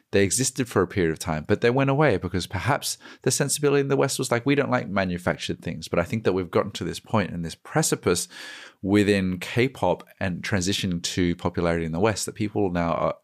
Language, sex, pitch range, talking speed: English, male, 85-105 Hz, 225 wpm